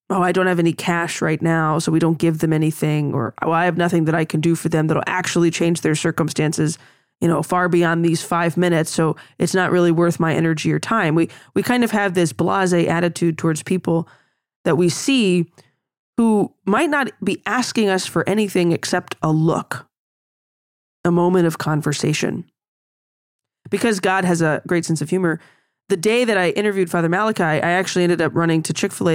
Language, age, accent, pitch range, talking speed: English, 20-39, American, 160-190 Hz, 200 wpm